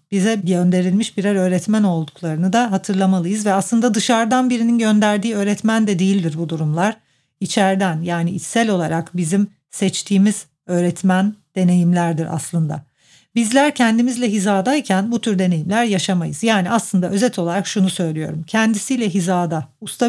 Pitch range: 175-220 Hz